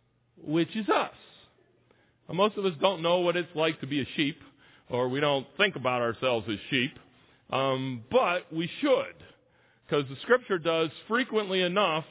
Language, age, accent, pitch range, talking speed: English, 50-69, American, 145-200 Hz, 170 wpm